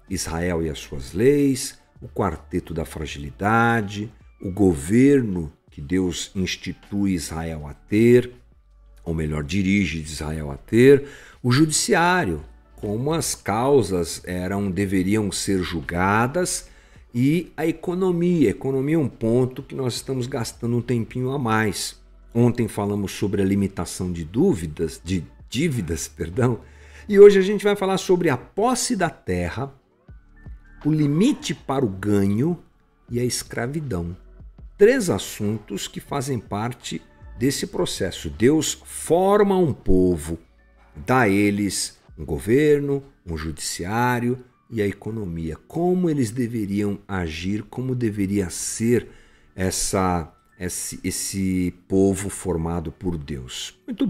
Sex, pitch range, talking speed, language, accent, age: male, 90-135 Hz, 125 wpm, Portuguese, Brazilian, 50-69